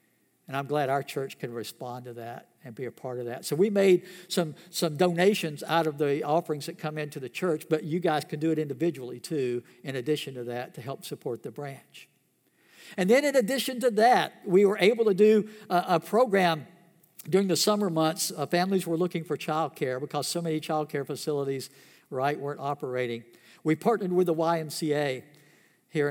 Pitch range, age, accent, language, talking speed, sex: 145-190 Hz, 60-79, American, English, 200 wpm, male